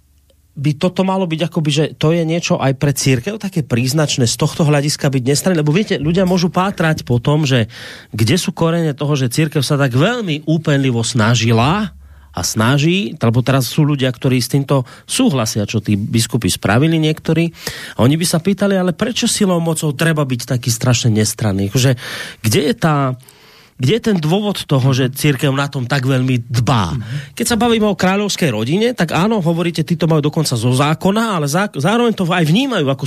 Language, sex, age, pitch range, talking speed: Slovak, male, 30-49, 130-170 Hz, 185 wpm